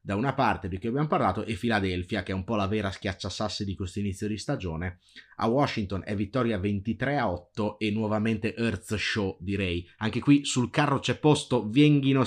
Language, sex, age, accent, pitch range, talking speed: Italian, male, 30-49, native, 100-125 Hz, 185 wpm